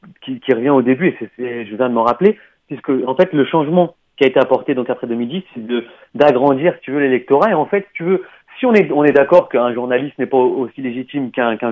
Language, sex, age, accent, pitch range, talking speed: French, male, 30-49, French, 130-170 Hz, 270 wpm